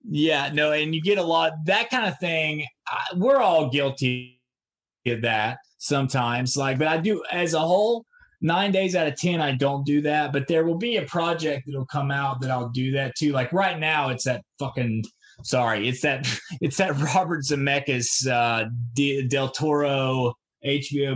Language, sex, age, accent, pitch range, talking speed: English, male, 20-39, American, 135-170 Hz, 185 wpm